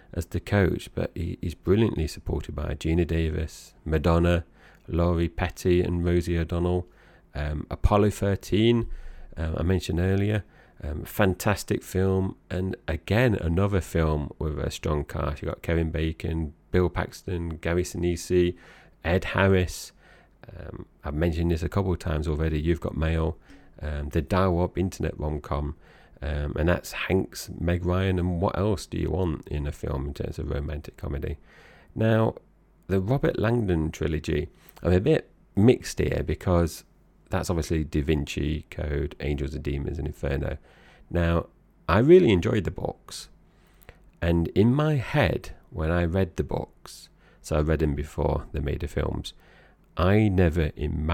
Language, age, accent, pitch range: English, 30-49, British, 80-90 Hz